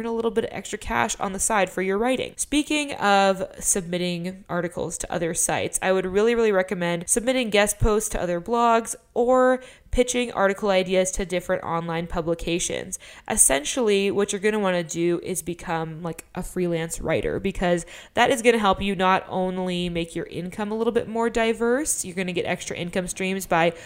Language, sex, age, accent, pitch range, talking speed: English, female, 20-39, American, 170-210 Hz, 195 wpm